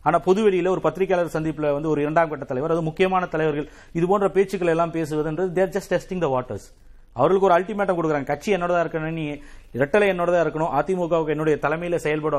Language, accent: Tamil, native